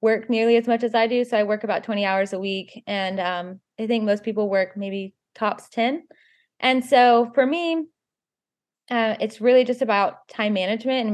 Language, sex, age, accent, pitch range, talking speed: English, female, 20-39, American, 195-235 Hz, 200 wpm